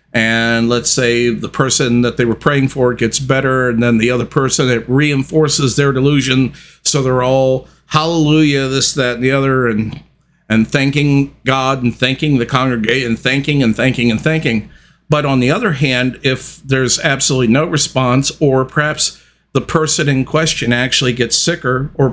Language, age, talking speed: English, 50-69, 175 wpm